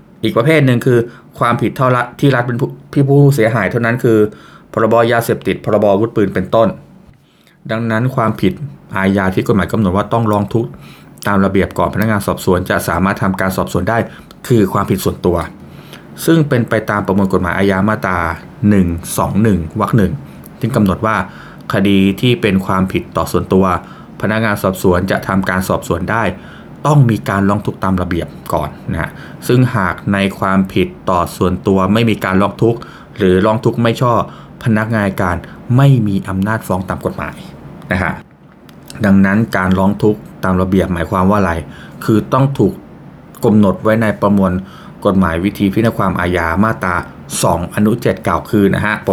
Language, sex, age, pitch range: Thai, male, 20-39, 95-115 Hz